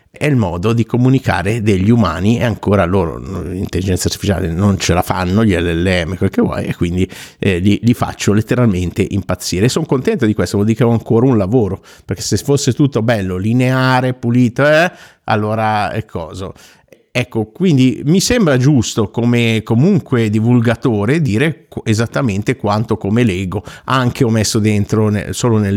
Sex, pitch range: male, 100-125 Hz